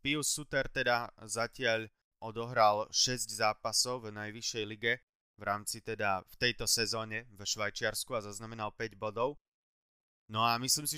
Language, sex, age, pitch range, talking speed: Slovak, male, 20-39, 110-125 Hz, 140 wpm